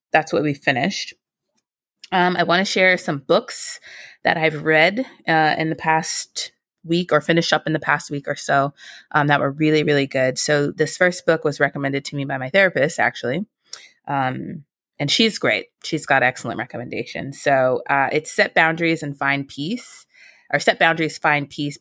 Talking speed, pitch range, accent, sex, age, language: 185 wpm, 135-165 Hz, American, female, 20-39, English